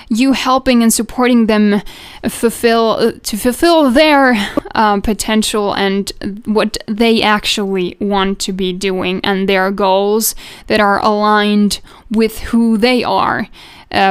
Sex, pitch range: female, 210-250 Hz